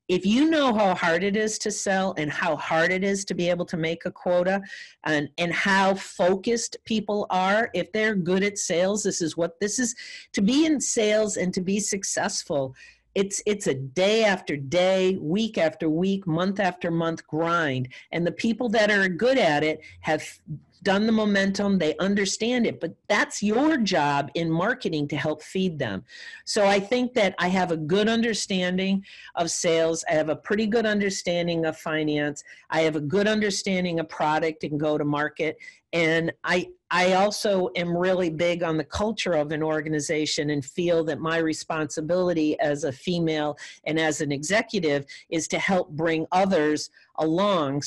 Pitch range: 160-200 Hz